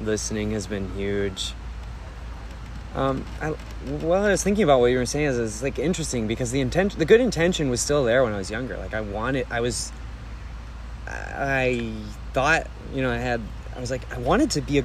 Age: 20-39